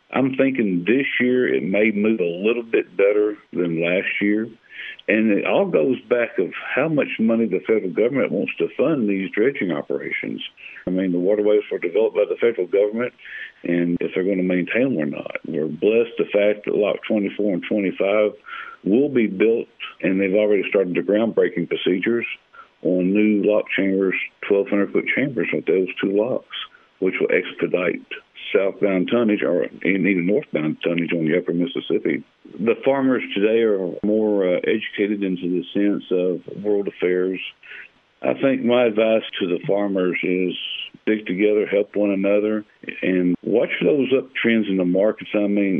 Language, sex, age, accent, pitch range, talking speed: English, male, 60-79, American, 90-110 Hz, 170 wpm